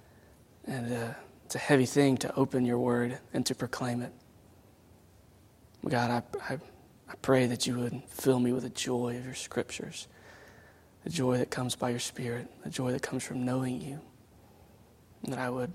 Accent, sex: American, male